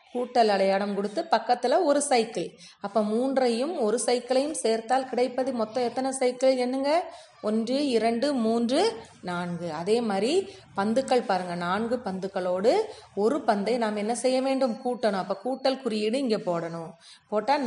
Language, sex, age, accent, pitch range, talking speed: Tamil, female, 30-49, native, 205-260 Hz, 130 wpm